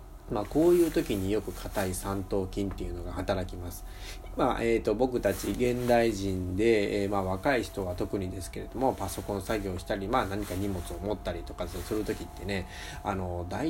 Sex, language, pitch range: male, Japanese, 90-120 Hz